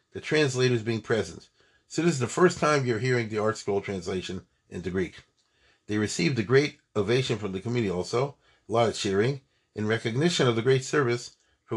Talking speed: 195 wpm